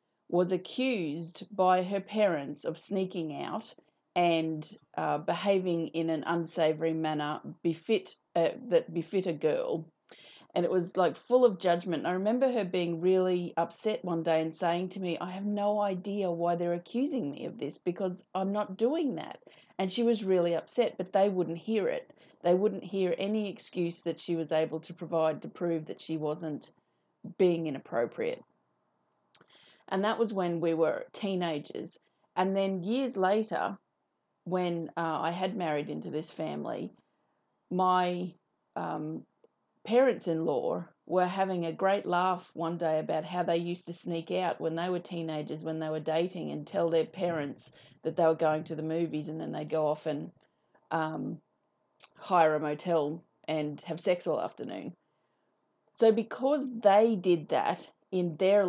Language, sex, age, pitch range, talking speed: English, female, 30-49, 165-195 Hz, 165 wpm